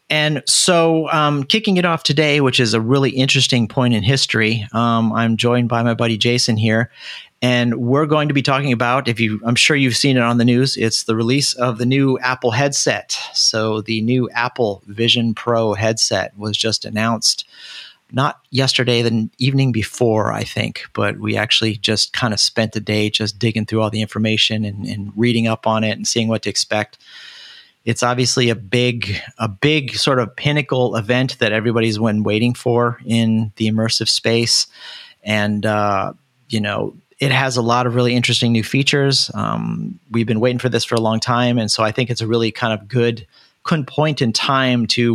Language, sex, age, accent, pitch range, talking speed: English, male, 40-59, American, 110-125 Hz, 195 wpm